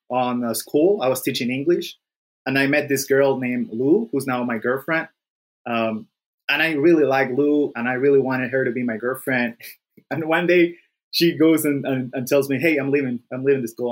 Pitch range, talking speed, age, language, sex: 125-160 Hz, 215 wpm, 20-39, English, male